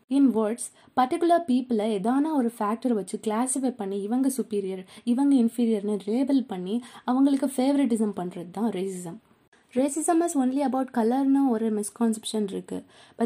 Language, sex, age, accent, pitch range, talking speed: Tamil, female, 20-39, native, 215-270 Hz, 130 wpm